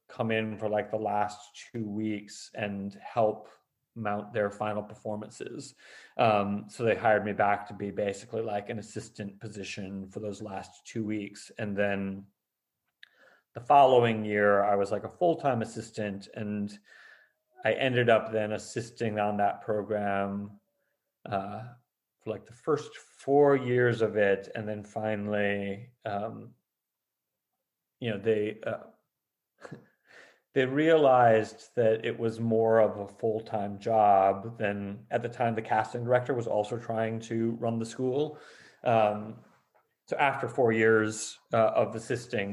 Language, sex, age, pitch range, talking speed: English, male, 40-59, 105-120 Hz, 145 wpm